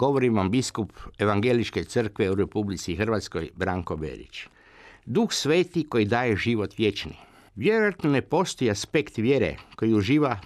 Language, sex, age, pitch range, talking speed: Croatian, male, 60-79, 105-140 Hz, 130 wpm